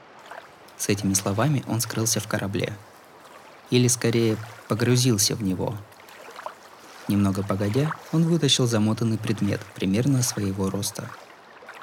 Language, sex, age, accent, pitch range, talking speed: Russian, male, 20-39, native, 100-125 Hz, 105 wpm